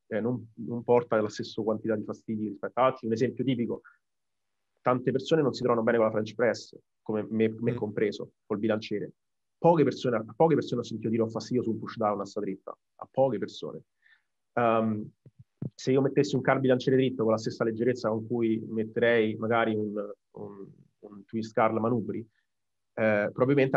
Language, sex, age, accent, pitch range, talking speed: Italian, male, 30-49, native, 110-130 Hz, 180 wpm